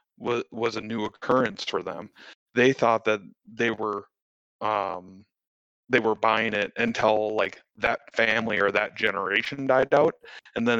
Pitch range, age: 105-120 Hz, 30-49